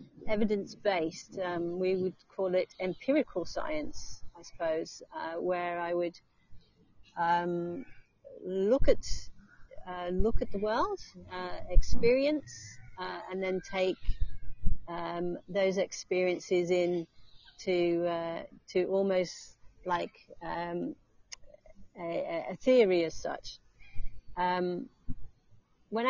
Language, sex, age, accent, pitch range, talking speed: English, female, 40-59, British, 170-200 Hz, 105 wpm